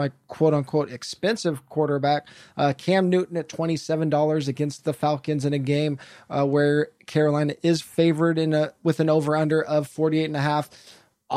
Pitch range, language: 145-165 Hz, English